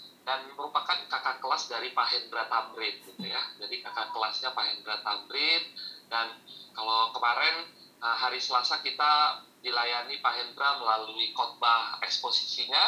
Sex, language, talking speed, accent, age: male, Indonesian, 130 wpm, native, 30-49